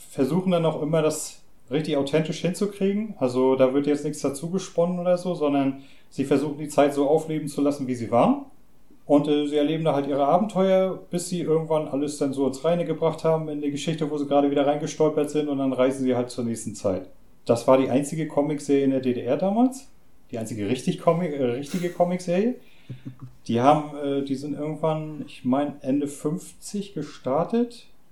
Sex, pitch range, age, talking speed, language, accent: male, 130-160 Hz, 40-59, 195 wpm, German, German